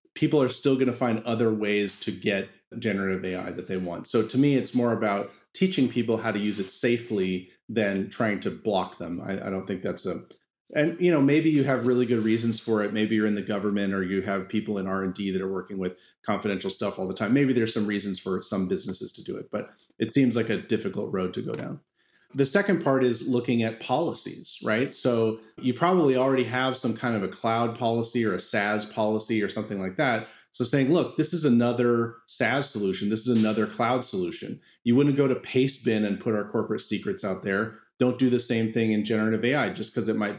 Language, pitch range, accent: English, 105-125 Hz, American